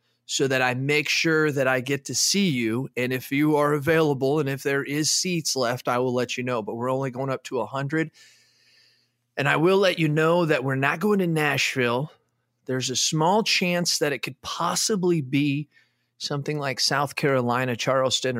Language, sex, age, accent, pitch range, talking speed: English, male, 30-49, American, 120-145 Hz, 195 wpm